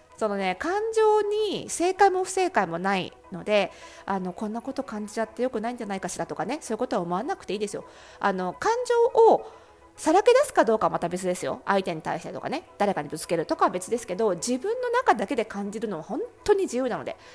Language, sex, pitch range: Japanese, female, 190-290 Hz